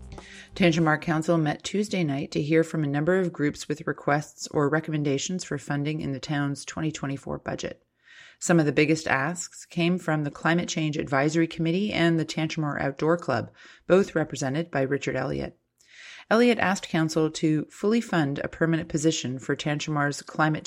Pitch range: 135-165 Hz